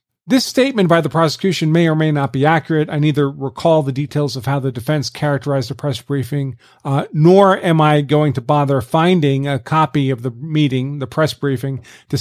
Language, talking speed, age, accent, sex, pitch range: English, 200 wpm, 40-59, American, male, 140-185 Hz